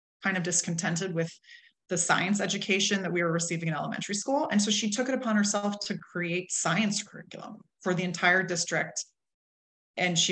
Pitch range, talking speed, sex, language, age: 170-205 Hz, 180 wpm, female, English, 20-39